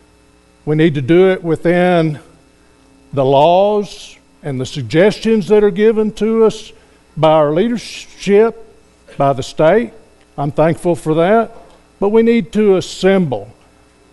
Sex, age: male, 60-79